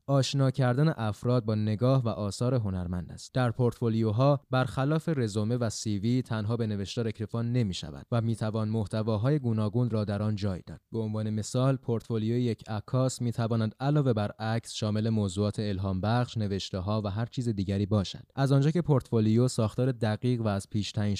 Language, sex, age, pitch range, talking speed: Persian, male, 20-39, 105-125 Hz, 170 wpm